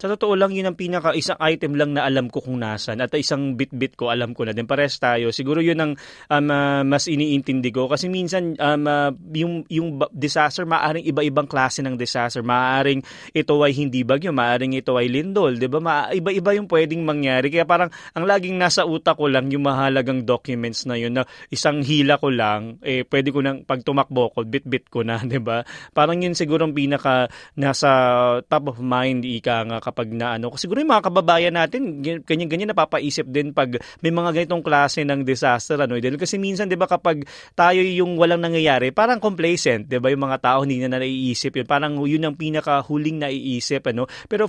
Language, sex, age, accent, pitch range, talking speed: Filipino, male, 20-39, native, 130-160 Hz, 190 wpm